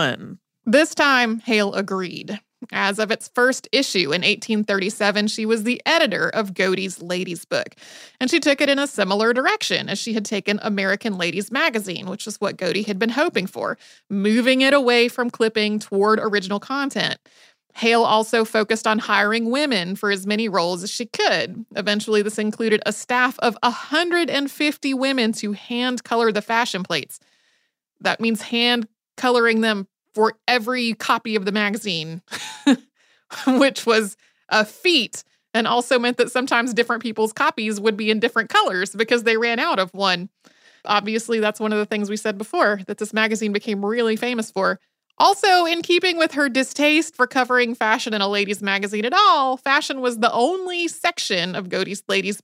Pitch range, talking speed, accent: 205-255 Hz, 170 wpm, American